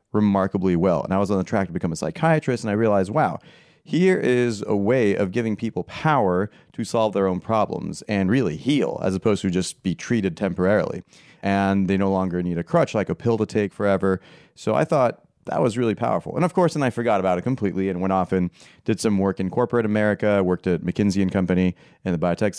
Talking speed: 230 wpm